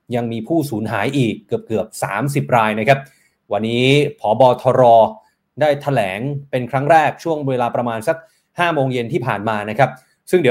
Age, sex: 20-39, male